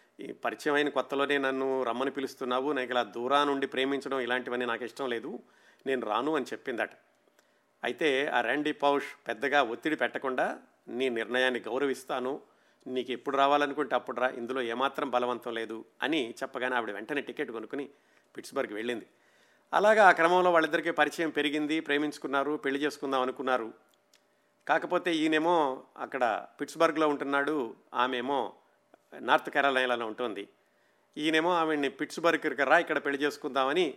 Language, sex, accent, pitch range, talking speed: Telugu, male, native, 130-160 Hz, 130 wpm